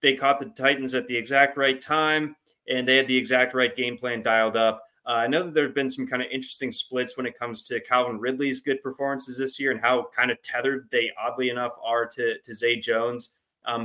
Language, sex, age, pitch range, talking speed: English, male, 20-39, 120-135 Hz, 235 wpm